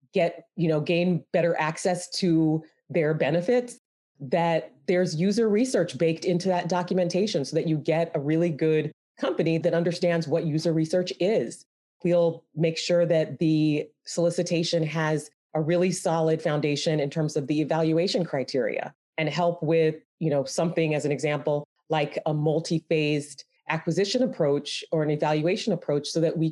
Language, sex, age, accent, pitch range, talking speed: English, female, 30-49, American, 155-175 Hz, 160 wpm